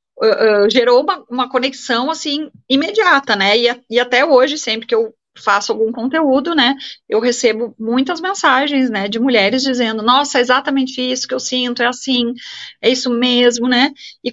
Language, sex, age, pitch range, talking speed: Portuguese, female, 30-49, 220-300 Hz, 180 wpm